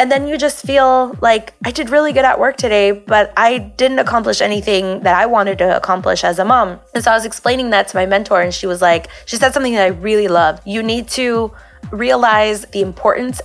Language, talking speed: English, 230 wpm